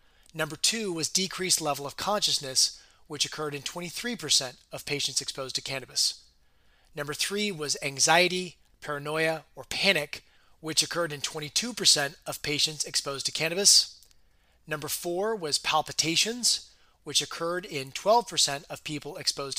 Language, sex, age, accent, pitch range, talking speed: English, male, 30-49, American, 140-170 Hz, 130 wpm